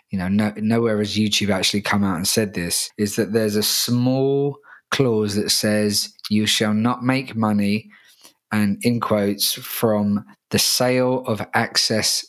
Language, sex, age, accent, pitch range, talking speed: English, male, 20-39, British, 100-115 Hz, 155 wpm